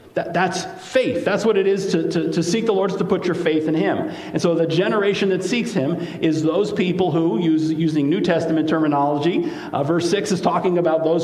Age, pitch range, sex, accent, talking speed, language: 50-69, 140-185 Hz, male, American, 220 wpm, English